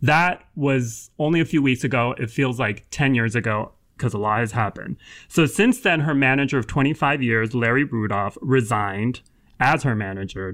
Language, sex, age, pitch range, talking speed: English, male, 30-49, 115-145 Hz, 180 wpm